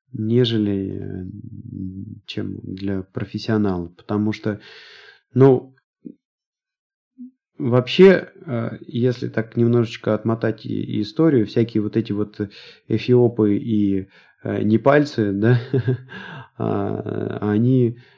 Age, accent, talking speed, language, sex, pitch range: 30-49, native, 70 wpm, Russian, male, 105-130 Hz